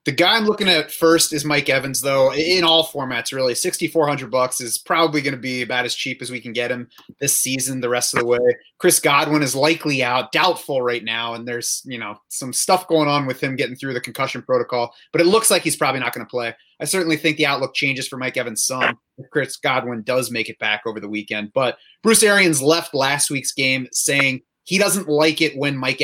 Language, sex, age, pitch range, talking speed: English, male, 30-49, 125-155 Hz, 235 wpm